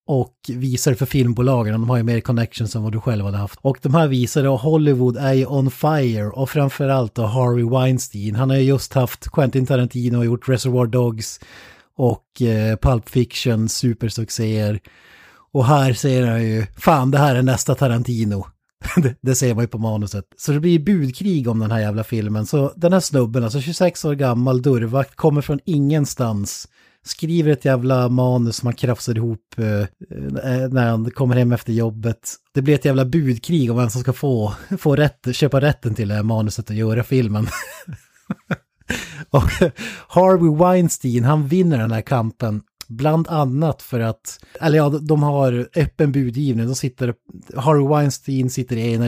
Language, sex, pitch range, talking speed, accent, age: Swedish, male, 115-140 Hz, 170 wpm, native, 30-49